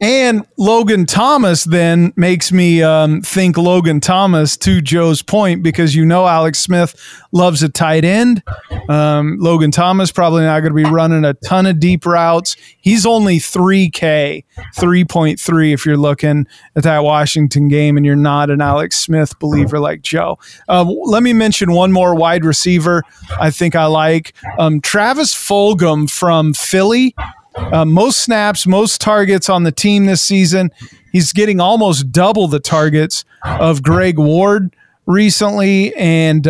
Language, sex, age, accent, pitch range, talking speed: English, male, 40-59, American, 155-185 Hz, 155 wpm